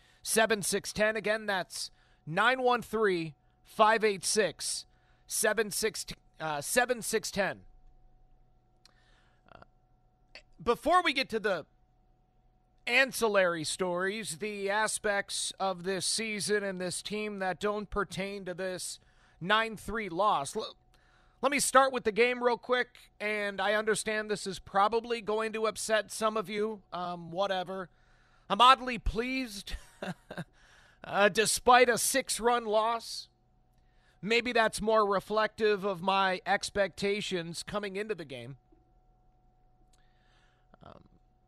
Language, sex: English, male